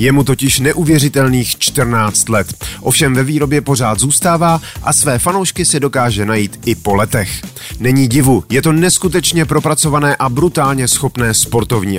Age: 30-49